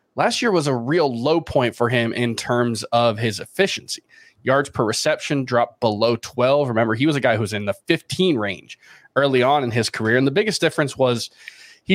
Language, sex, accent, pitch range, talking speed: English, male, American, 120-150 Hz, 210 wpm